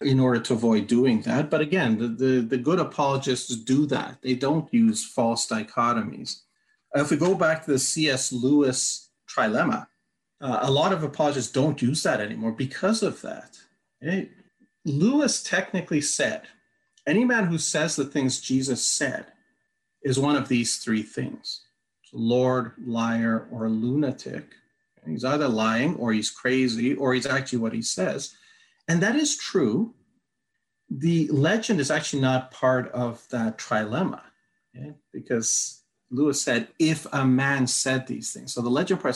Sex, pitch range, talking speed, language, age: male, 120-155 Hz, 155 wpm, English, 40-59